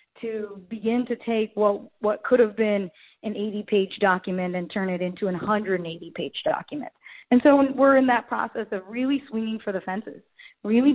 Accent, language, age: American, English, 30-49